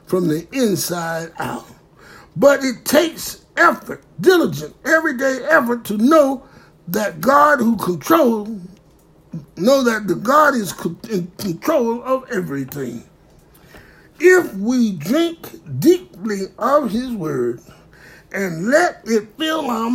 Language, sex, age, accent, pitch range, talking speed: English, male, 60-79, American, 155-255 Hz, 115 wpm